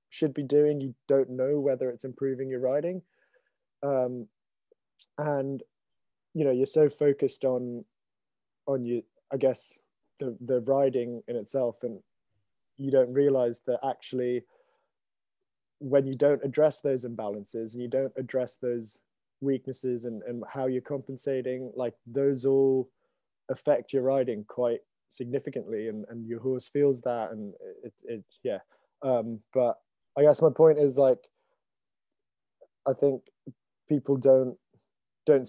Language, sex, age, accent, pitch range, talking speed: English, male, 20-39, British, 120-135 Hz, 140 wpm